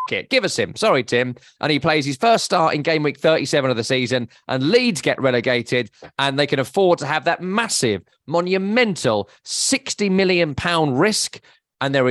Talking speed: 185 wpm